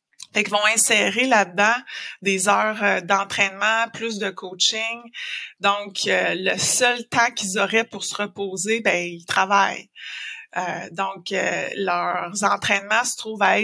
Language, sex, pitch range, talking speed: French, female, 195-225 Hz, 135 wpm